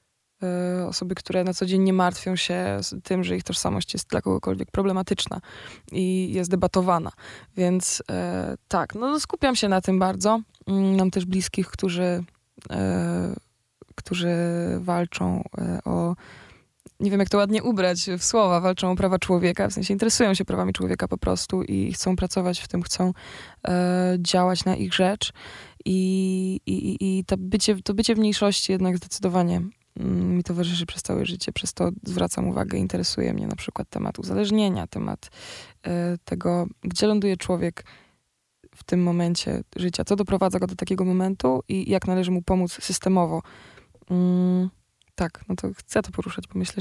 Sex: female